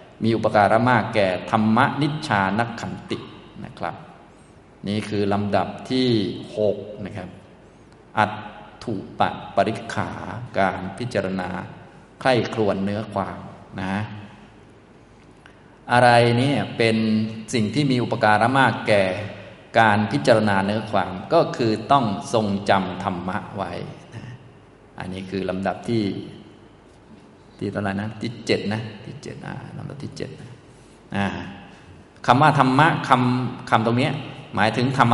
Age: 20-39